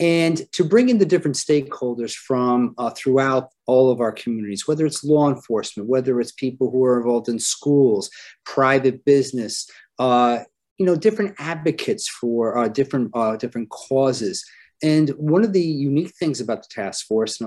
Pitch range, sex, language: 120-165 Hz, male, English